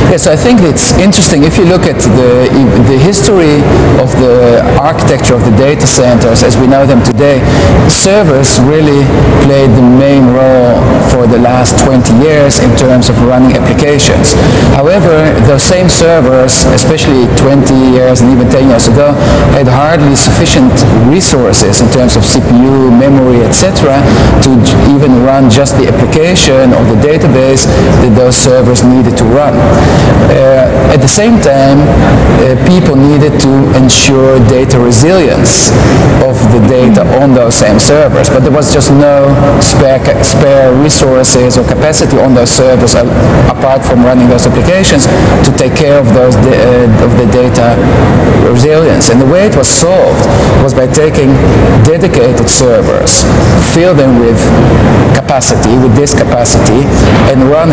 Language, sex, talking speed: English, male, 150 wpm